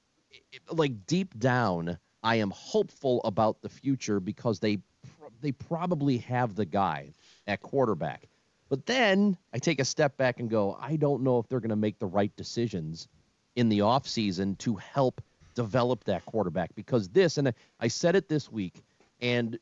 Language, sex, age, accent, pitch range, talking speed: English, male, 40-59, American, 95-135 Hz, 170 wpm